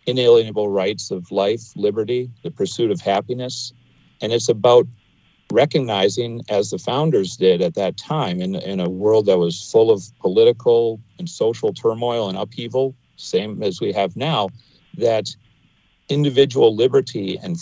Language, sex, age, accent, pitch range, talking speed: English, male, 50-69, American, 110-180 Hz, 145 wpm